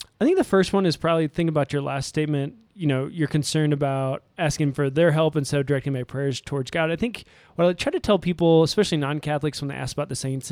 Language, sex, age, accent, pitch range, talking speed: English, male, 20-39, American, 135-165 Hz, 250 wpm